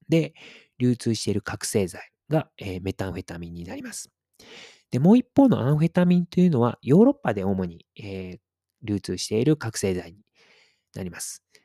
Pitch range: 95-155 Hz